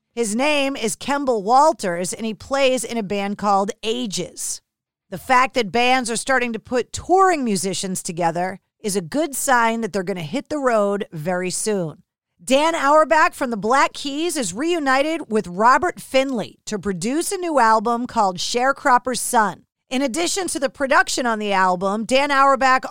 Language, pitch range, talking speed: English, 215-275 Hz, 175 wpm